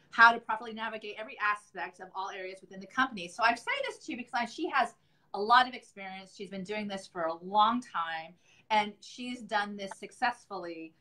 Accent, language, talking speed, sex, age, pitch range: American, English, 205 wpm, female, 30-49, 185-225 Hz